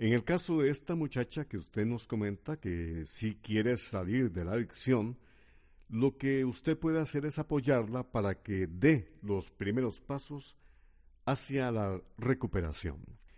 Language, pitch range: Spanish, 95-135 Hz